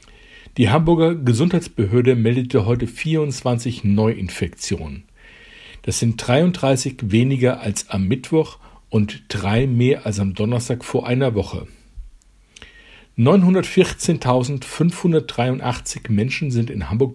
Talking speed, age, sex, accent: 100 wpm, 50-69, male, German